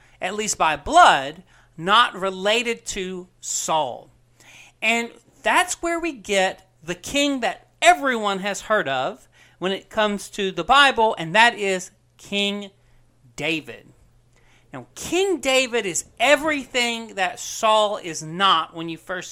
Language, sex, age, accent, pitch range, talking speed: English, male, 40-59, American, 170-250 Hz, 135 wpm